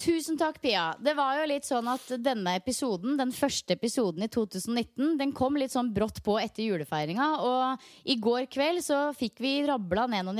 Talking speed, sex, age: 195 wpm, female, 30-49